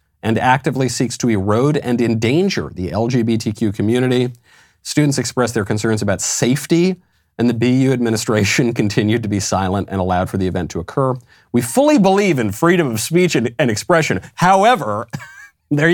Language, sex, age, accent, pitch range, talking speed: English, male, 40-59, American, 95-125 Hz, 160 wpm